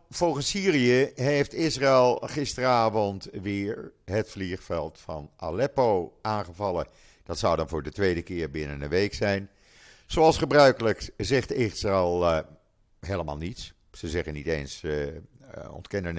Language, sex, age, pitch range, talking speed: Dutch, male, 50-69, 90-120 Hz, 130 wpm